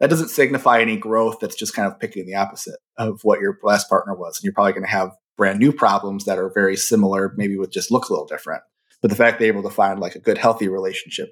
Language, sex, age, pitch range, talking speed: English, male, 30-49, 100-125 Hz, 265 wpm